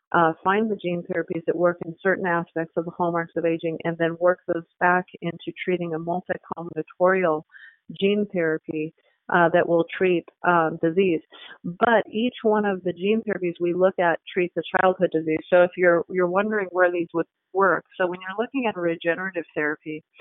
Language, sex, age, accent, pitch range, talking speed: English, female, 40-59, American, 165-190 Hz, 185 wpm